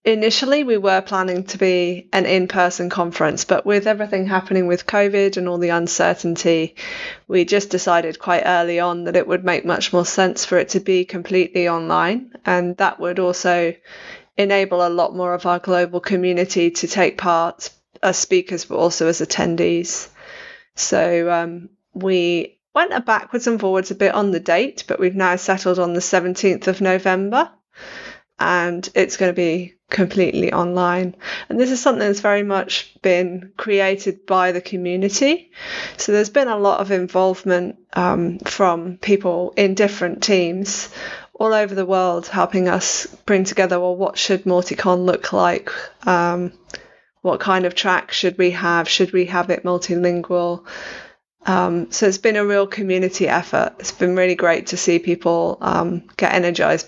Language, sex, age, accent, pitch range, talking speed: English, female, 20-39, British, 175-195 Hz, 165 wpm